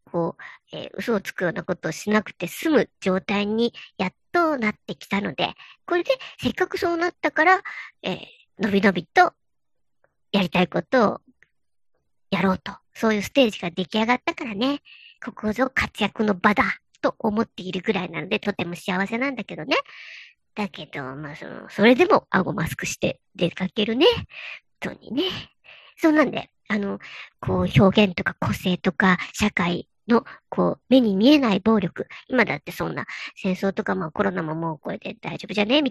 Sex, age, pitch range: male, 50-69, 195-265 Hz